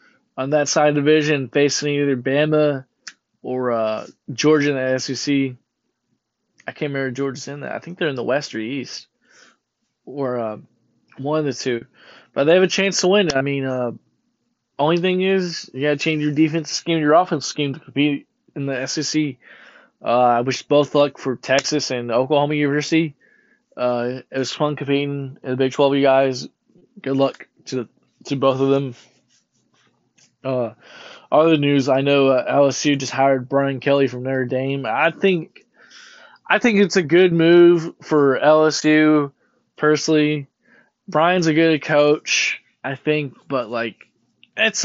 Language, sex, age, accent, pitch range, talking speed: English, male, 20-39, American, 135-165 Hz, 170 wpm